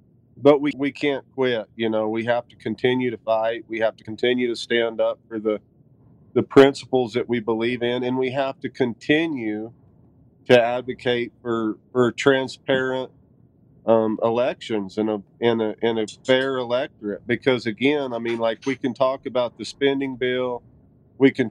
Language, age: English, 40-59